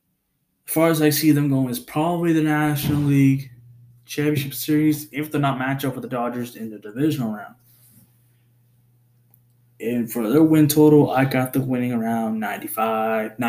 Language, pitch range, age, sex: English, 120-140 Hz, 20-39, male